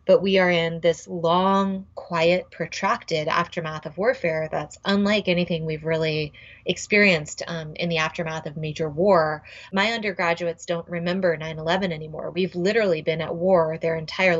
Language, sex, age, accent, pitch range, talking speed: English, female, 20-39, American, 165-190 Hz, 155 wpm